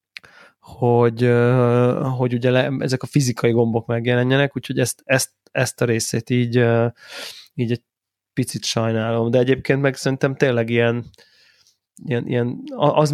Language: Hungarian